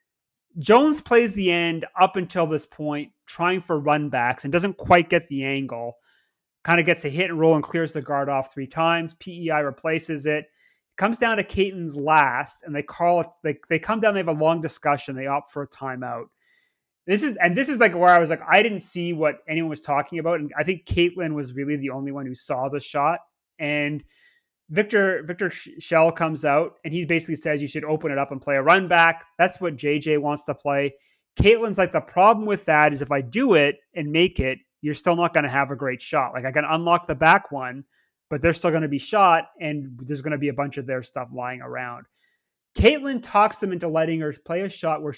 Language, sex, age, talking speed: English, male, 30-49, 230 wpm